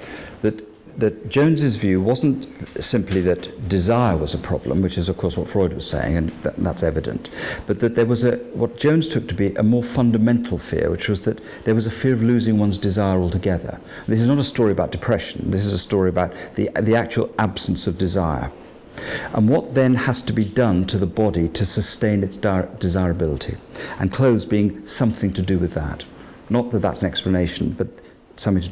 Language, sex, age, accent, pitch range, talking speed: English, male, 50-69, British, 90-115 Hz, 200 wpm